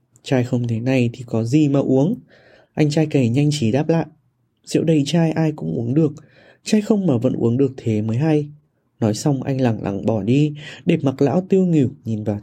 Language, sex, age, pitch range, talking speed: Vietnamese, male, 20-39, 120-160 Hz, 220 wpm